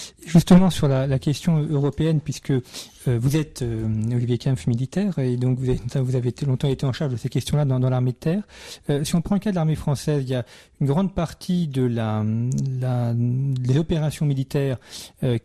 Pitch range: 120-150 Hz